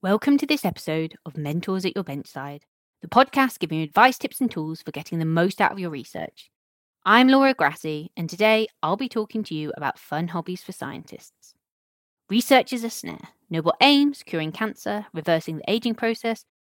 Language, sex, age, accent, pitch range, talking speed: English, female, 20-39, British, 155-230 Hz, 190 wpm